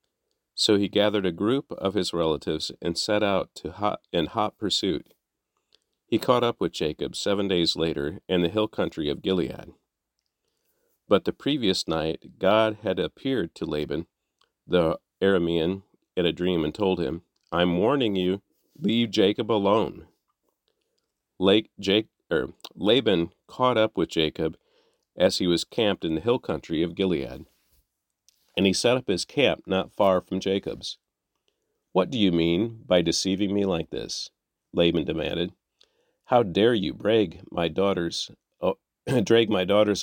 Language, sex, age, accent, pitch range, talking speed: English, male, 40-59, American, 85-110 Hz, 155 wpm